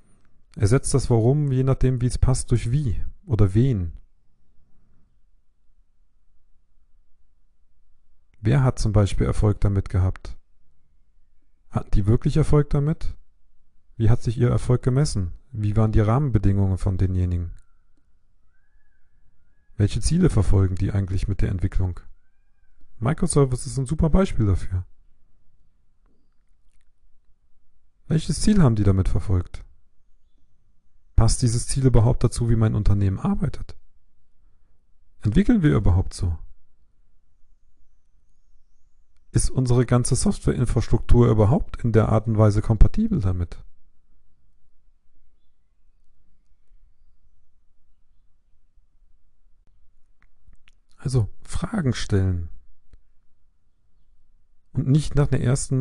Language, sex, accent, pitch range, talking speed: German, male, German, 80-120 Hz, 95 wpm